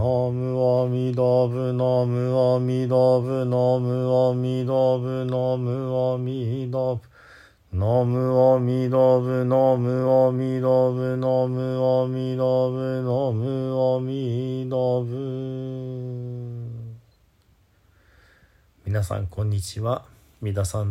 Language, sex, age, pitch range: Japanese, male, 50-69, 85-125 Hz